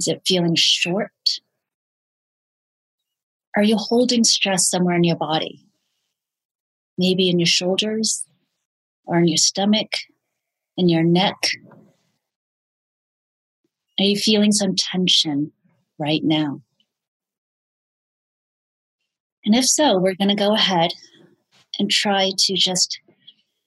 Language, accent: English, American